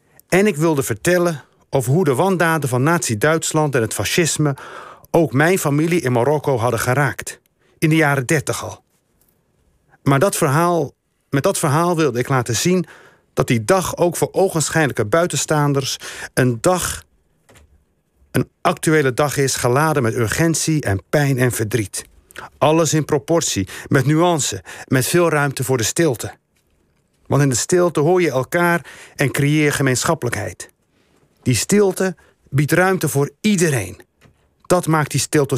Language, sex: Dutch, male